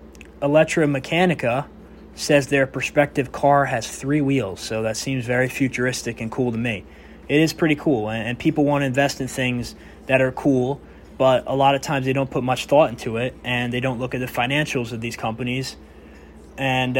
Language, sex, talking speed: English, male, 200 wpm